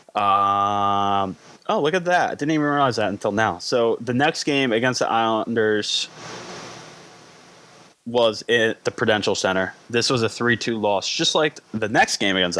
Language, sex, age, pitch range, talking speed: English, male, 20-39, 100-125 Hz, 160 wpm